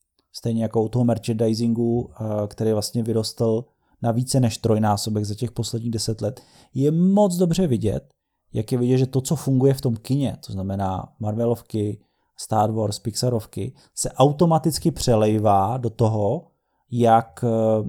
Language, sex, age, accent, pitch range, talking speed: Czech, male, 30-49, native, 110-120 Hz, 145 wpm